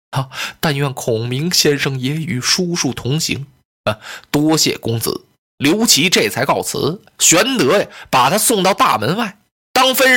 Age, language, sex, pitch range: 20-39, Chinese, male, 140-210 Hz